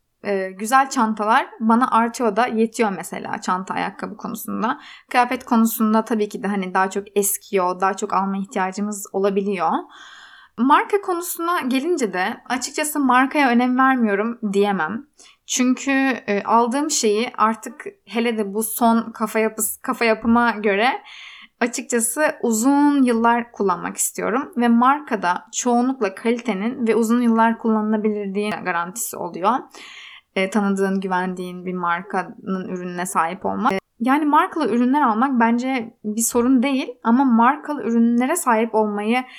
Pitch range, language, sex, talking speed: 205-260 Hz, Turkish, female, 125 wpm